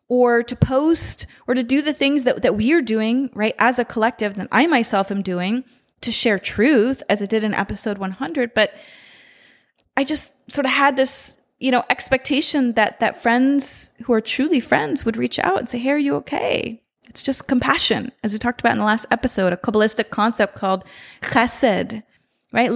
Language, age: English, 30-49